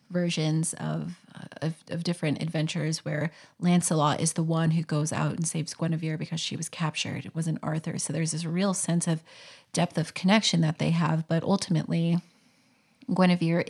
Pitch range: 160-185 Hz